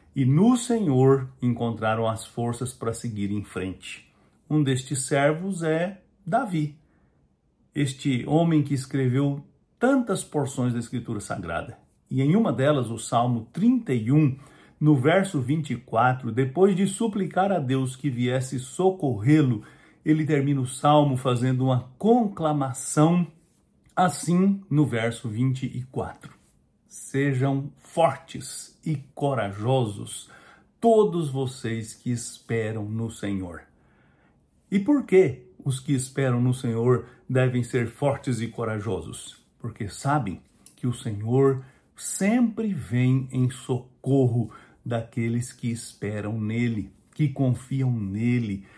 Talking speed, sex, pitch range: 115 wpm, male, 115-150 Hz